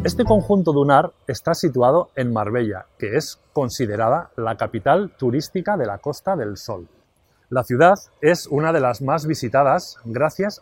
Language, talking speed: English, 155 wpm